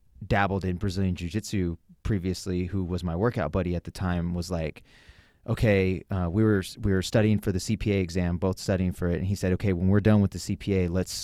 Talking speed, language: 220 wpm, English